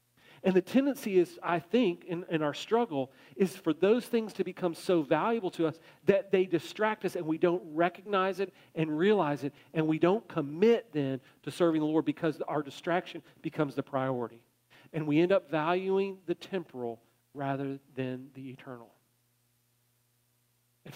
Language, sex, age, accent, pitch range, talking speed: English, male, 40-59, American, 130-185 Hz, 170 wpm